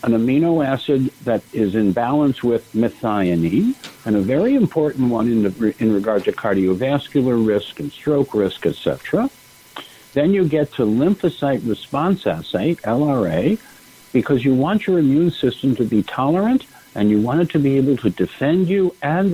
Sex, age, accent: male, 60-79, American